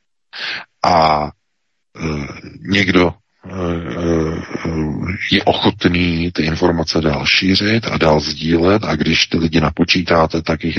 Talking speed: 100 wpm